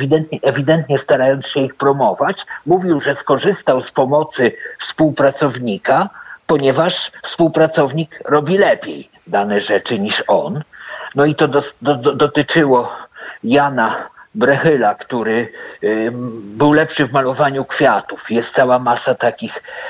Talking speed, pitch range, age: 110 wpm, 125-150 Hz, 50-69